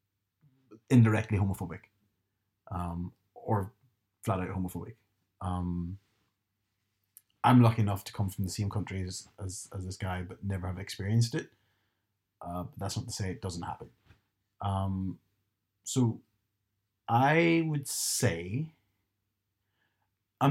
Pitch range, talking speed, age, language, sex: 95-110 Hz, 120 wpm, 30-49, English, male